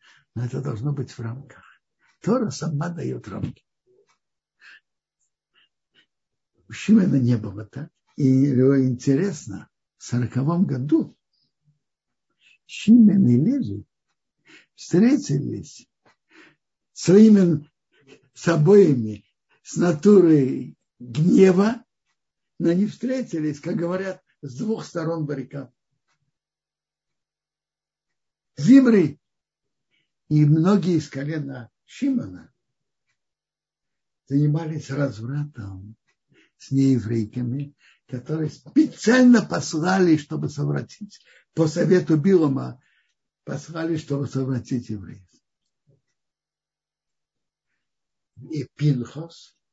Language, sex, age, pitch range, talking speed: Russian, male, 60-79, 135-200 Hz, 75 wpm